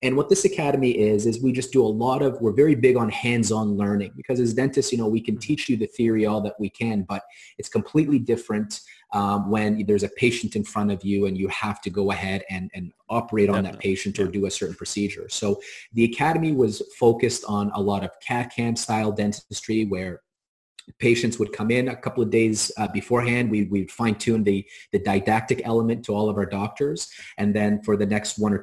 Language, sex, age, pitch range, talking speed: English, male, 30-49, 100-115 Hz, 225 wpm